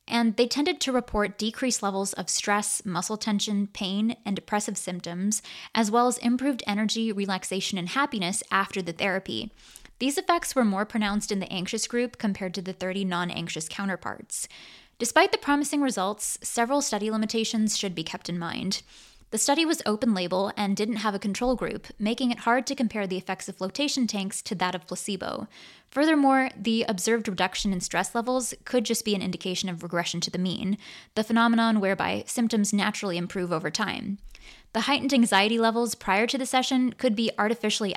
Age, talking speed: 20-39, 180 wpm